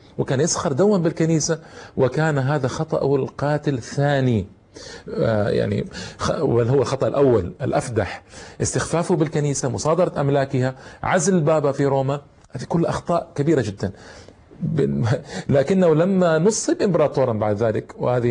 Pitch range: 110-160 Hz